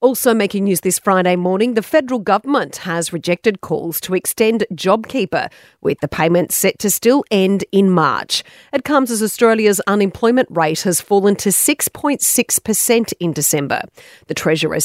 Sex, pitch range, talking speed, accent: female, 170-240 Hz, 155 wpm, Australian